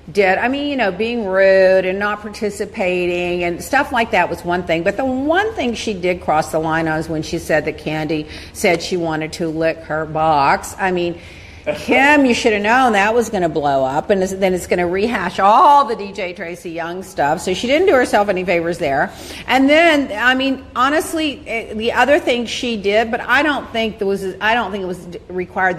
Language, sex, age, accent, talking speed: English, female, 50-69, American, 220 wpm